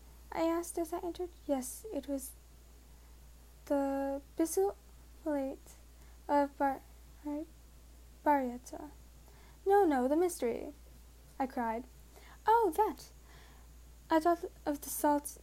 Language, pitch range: English, 275-330 Hz